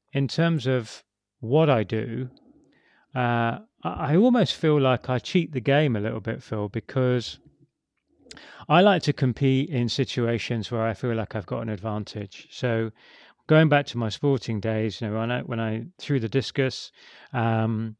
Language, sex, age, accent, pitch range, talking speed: English, male, 30-49, British, 110-135 Hz, 170 wpm